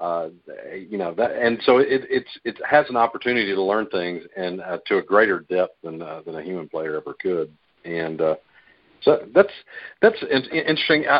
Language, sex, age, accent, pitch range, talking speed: English, male, 50-69, American, 85-110 Hz, 190 wpm